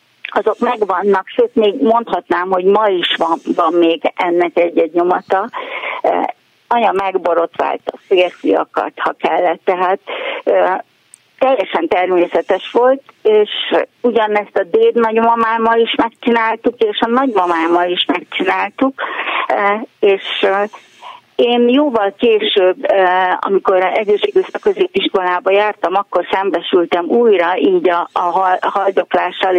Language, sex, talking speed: Hungarian, female, 105 wpm